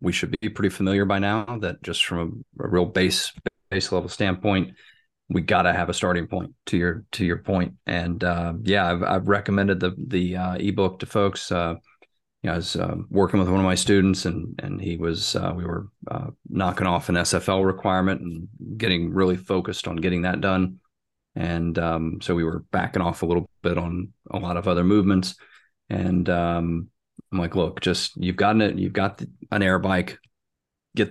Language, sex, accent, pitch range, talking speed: English, male, American, 90-100 Hz, 205 wpm